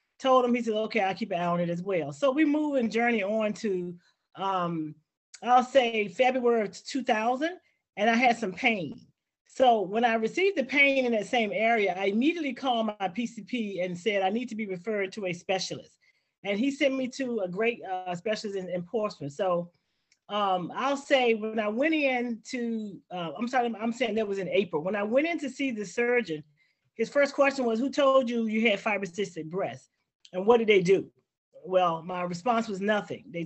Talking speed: 210 wpm